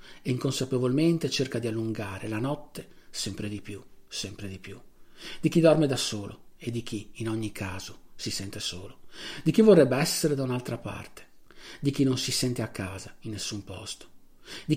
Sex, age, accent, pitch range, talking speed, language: male, 40-59, native, 105-130 Hz, 185 wpm, Italian